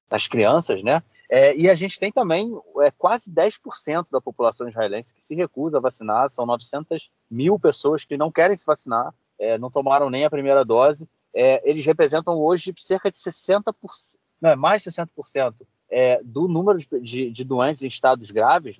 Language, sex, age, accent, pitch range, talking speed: Portuguese, male, 30-49, Brazilian, 125-180 Hz, 160 wpm